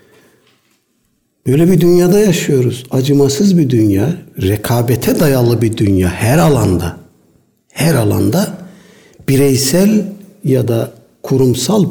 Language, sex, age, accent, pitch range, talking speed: Turkish, male, 60-79, native, 125-165 Hz, 95 wpm